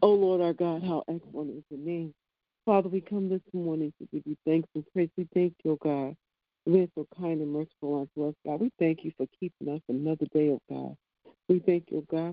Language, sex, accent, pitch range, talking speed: English, female, American, 140-165 Hz, 235 wpm